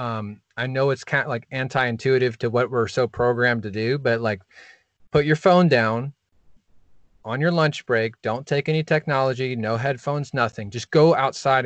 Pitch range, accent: 115-135 Hz, American